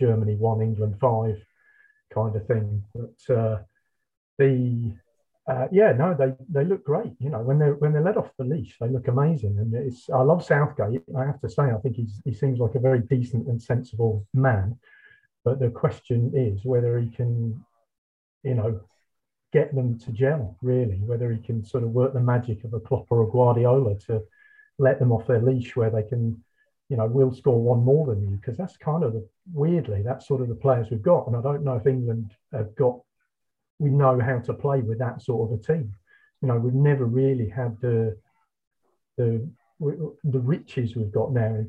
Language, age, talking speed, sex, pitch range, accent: English, 40-59, 205 wpm, male, 115-135 Hz, British